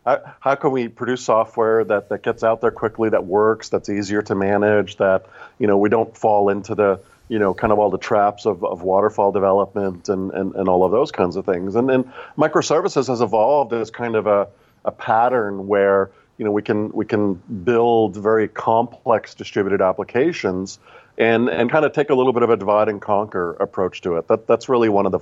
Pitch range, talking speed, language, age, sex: 95-115 Hz, 215 wpm, English, 40-59, male